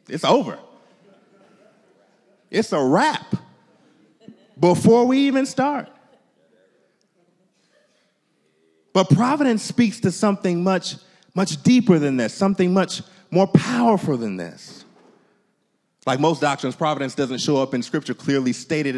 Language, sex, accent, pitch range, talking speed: English, male, American, 135-190 Hz, 115 wpm